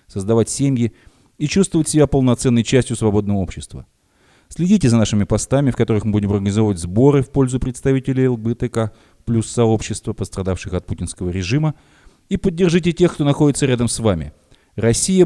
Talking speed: 150 wpm